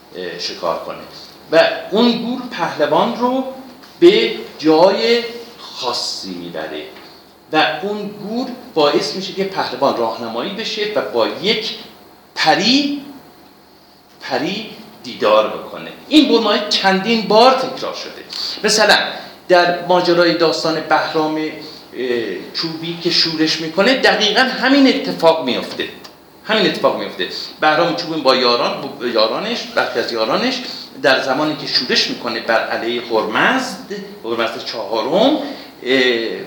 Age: 50-69